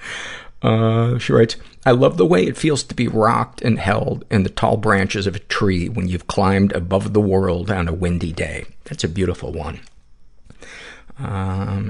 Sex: male